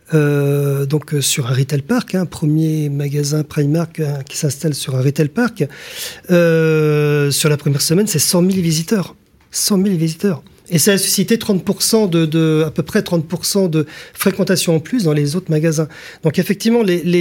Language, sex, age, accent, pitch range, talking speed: French, male, 40-59, French, 150-180 Hz, 170 wpm